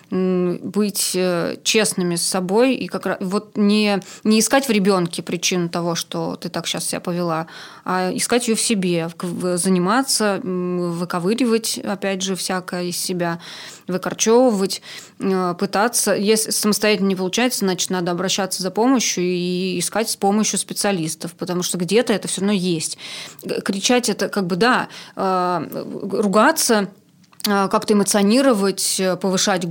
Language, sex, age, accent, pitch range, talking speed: Russian, female, 20-39, native, 185-215 Hz, 130 wpm